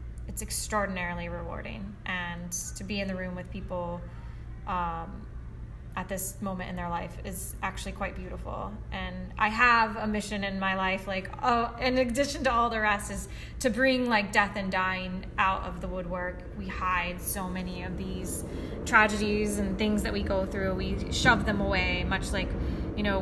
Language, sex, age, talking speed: English, female, 20-39, 180 wpm